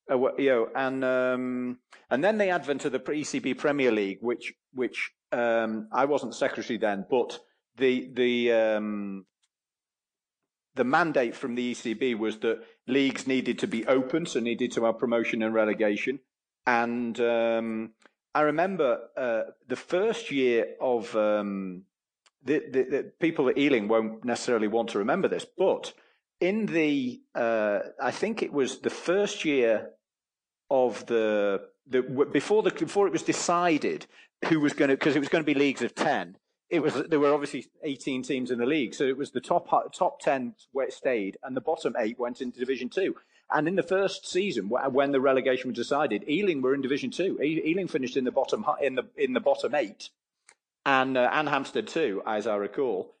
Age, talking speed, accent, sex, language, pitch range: 40-59, 185 wpm, British, male, English, 115-150 Hz